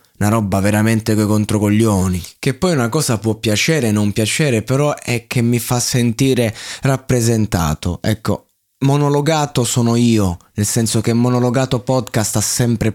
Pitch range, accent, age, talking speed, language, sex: 100-120 Hz, native, 20-39, 150 wpm, Italian, male